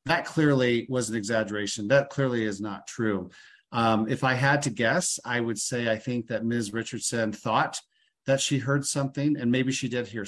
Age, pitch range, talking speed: 40-59, 110-130 Hz, 200 wpm